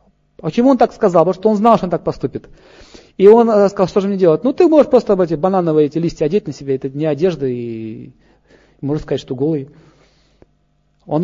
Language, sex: Russian, male